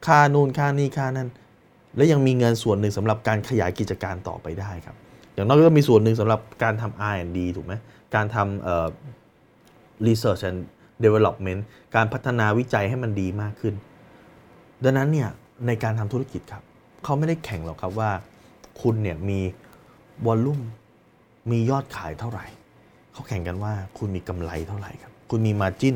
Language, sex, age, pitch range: Thai, male, 20-39, 95-125 Hz